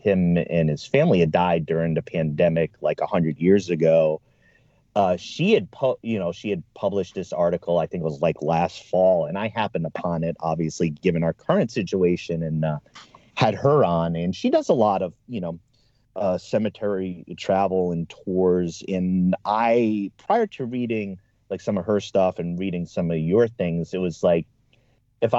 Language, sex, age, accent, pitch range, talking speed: English, male, 30-49, American, 90-125 Hz, 185 wpm